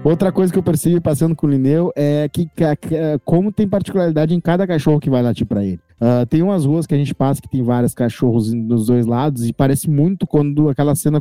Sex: male